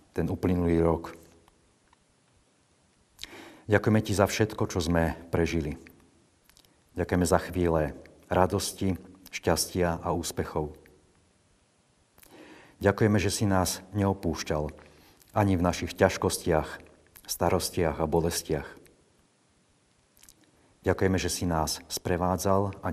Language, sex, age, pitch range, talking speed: Slovak, male, 50-69, 80-95 Hz, 90 wpm